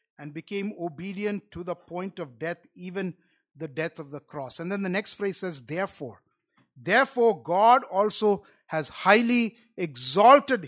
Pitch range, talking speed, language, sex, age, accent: 160-210 Hz, 150 wpm, English, male, 50-69, Indian